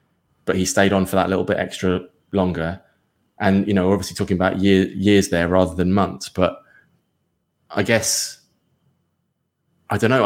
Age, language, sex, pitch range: 20-39, English, male, 90-105 Hz